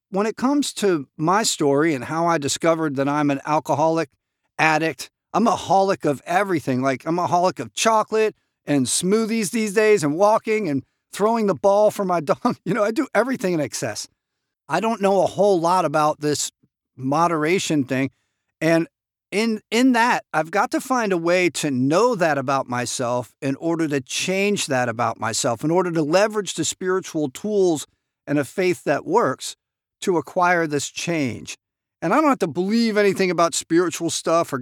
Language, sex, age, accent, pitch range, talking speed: English, male, 50-69, American, 145-205 Hz, 180 wpm